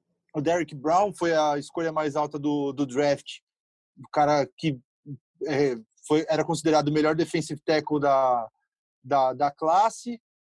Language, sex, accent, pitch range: Portuguese, male, Brazilian, 150-185 Hz